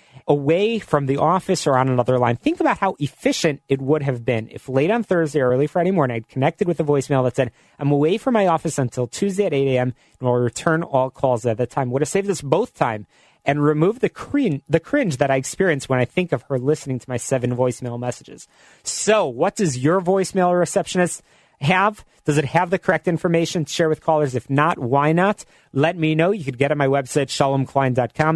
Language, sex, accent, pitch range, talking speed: English, male, American, 130-170 Hz, 225 wpm